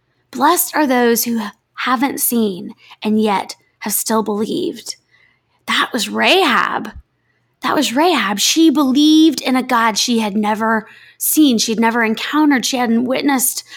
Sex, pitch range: female, 220-255 Hz